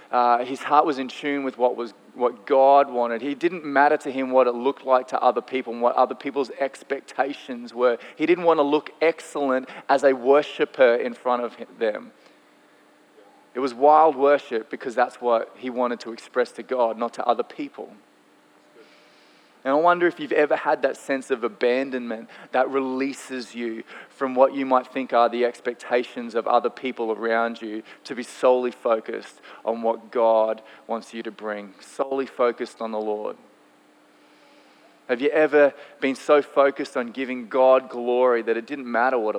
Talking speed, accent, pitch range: 180 wpm, Australian, 120-140 Hz